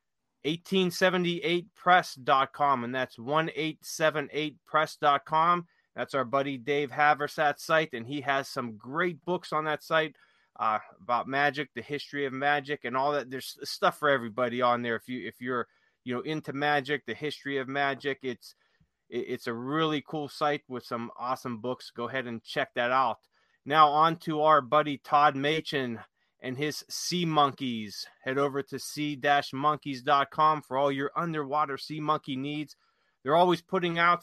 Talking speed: 160 wpm